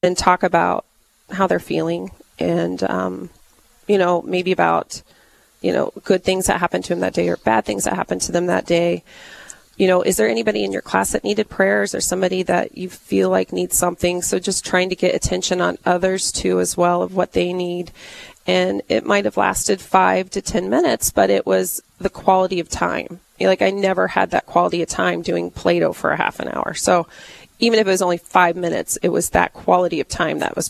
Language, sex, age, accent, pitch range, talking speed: English, female, 30-49, American, 120-200 Hz, 225 wpm